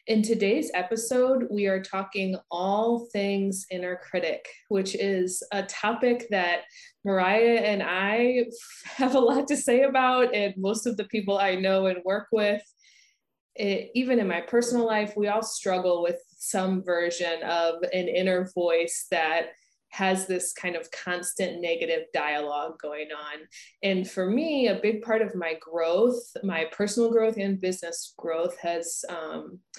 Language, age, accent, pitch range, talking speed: English, 20-39, American, 175-225 Hz, 155 wpm